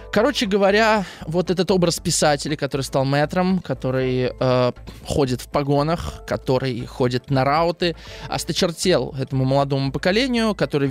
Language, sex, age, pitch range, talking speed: Russian, male, 20-39, 130-165 Hz, 125 wpm